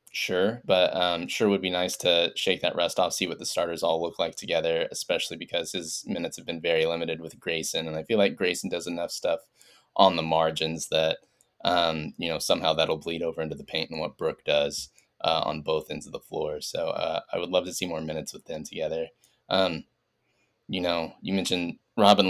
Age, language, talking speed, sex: 10-29, English, 220 wpm, male